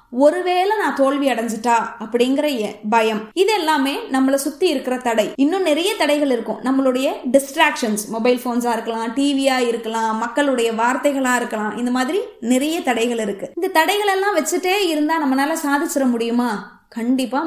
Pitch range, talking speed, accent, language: 235-300 Hz, 40 wpm, native, Tamil